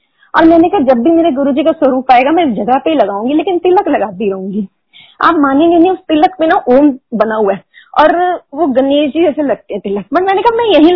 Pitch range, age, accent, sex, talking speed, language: 260-365 Hz, 30-49, native, female, 230 wpm, Hindi